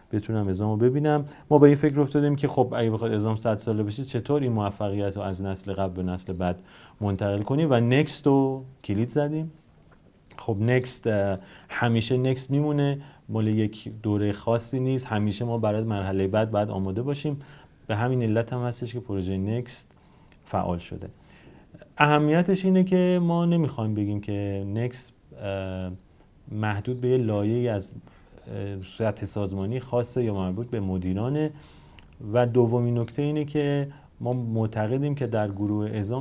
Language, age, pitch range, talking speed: Persian, 30-49, 100-130 Hz, 150 wpm